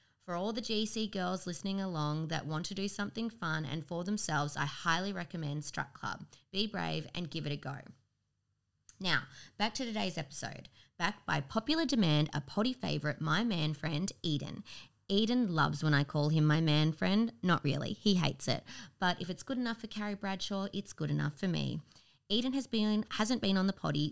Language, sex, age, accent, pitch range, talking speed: English, female, 20-39, Australian, 150-195 Hz, 190 wpm